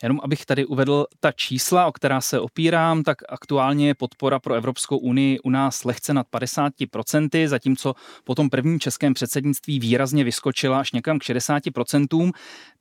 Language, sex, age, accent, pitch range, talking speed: Czech, male, 30-49, native, 130-165 Hz, 160 wpm